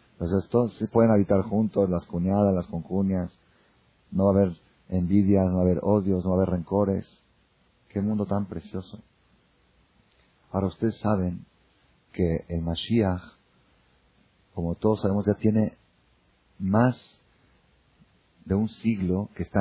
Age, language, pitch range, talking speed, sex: 40-59, Spanish, 90-105 Hz, 140 wpm, male